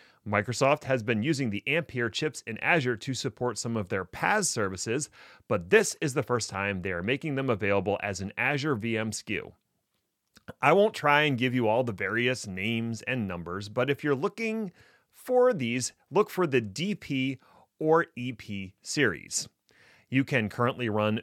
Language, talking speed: English, 170 wpm